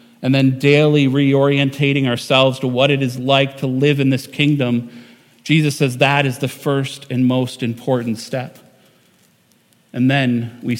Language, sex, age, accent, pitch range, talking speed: English, male, 40-59, American, 125-140 Hz, 155 wpm